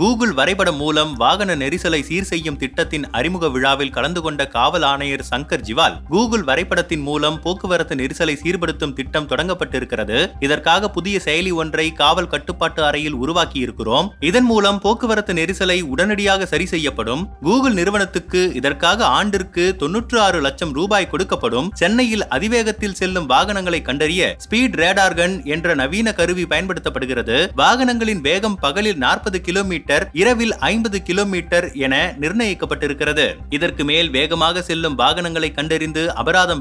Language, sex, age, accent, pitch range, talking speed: Tamil, male, 30-49, native, 155-195 Hz, 115 wpm